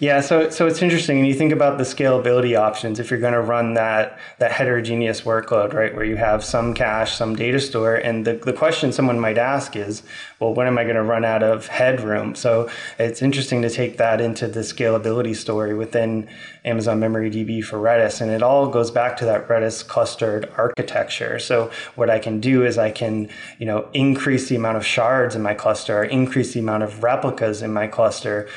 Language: English